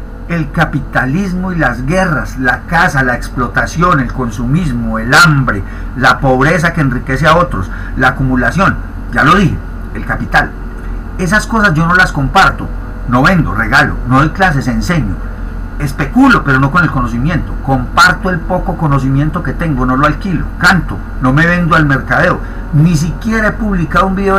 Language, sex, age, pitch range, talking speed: Spanish, male, 40-59, 125-175 Hz, 160 wpm